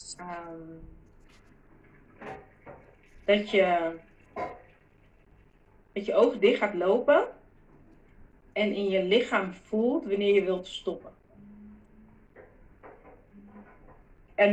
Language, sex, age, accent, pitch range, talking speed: Dutch, female, 30-49, Dutch, 190-235 Hz, 80 wpm